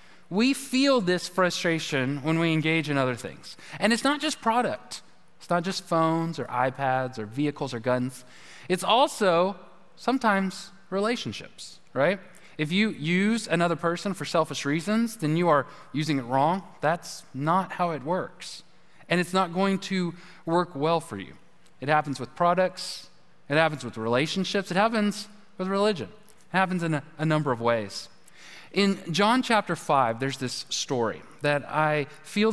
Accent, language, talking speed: American, English, 160 wpm